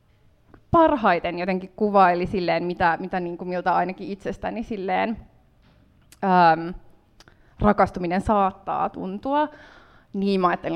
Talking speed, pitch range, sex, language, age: 100 wpm, 175-205 Hz, female, Finnish, 20-39